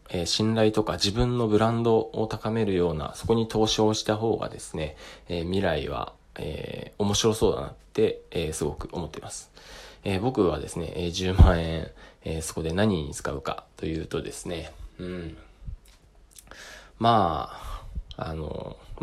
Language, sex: Japanese, male